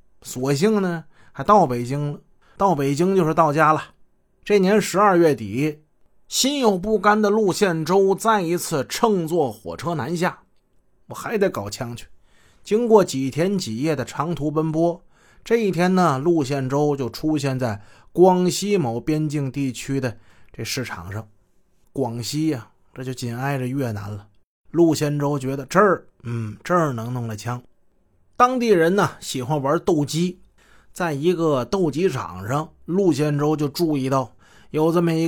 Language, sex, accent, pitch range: Chinese, male, native, 125-170 Hz